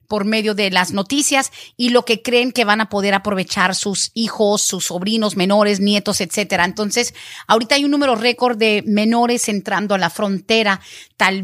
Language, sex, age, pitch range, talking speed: Spanish, female, 40-59, 205-250 Hz, 180 wpm